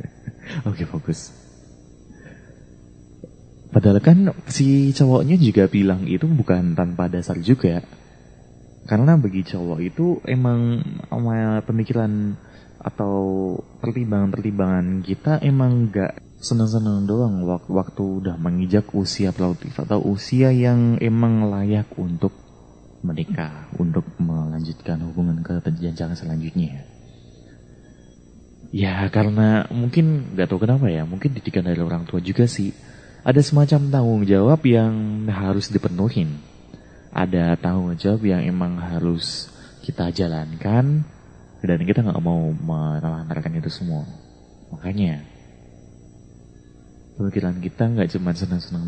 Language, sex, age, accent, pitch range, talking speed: Indonesian, male, 20-39, native, 85-115 Hz, 105 wpm